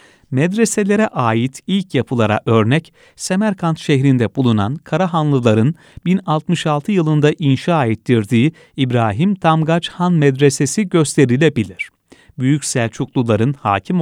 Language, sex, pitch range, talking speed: Turkish, male, 120-165 Hz, 90 wpm